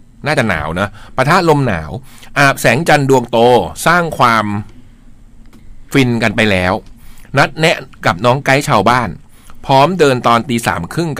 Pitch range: 105-140 Hz